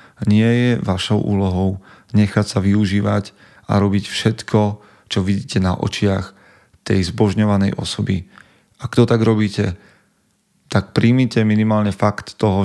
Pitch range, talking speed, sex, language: 100-115 Hz, 125 wpm, male, Slovak